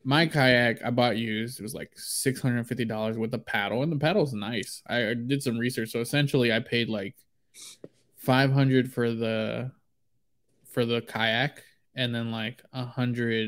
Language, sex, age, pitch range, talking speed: English, male, 20-39, 115-130 Hz, 180 wpm